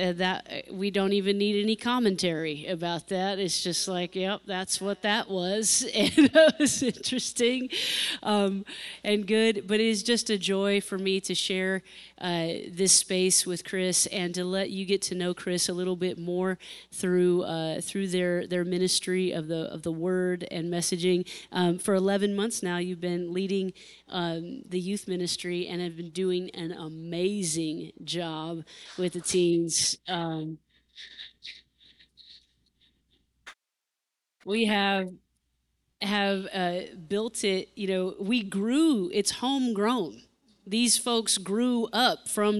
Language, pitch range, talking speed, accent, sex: English, 170-200 Hz, 145 wpm, American, female